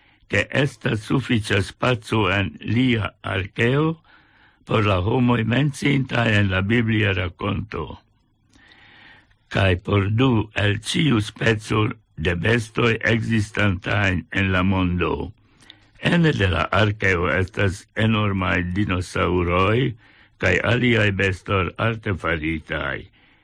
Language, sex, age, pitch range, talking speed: English, male, 60-79, 95-115 Hz, 95 wpm